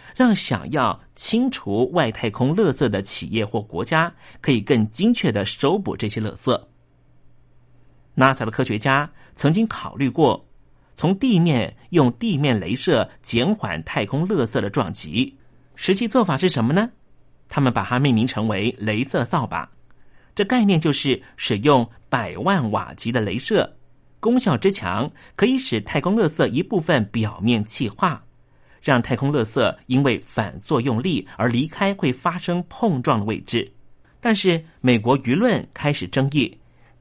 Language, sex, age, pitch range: Chinese, male, 50-69, 115-170 Hz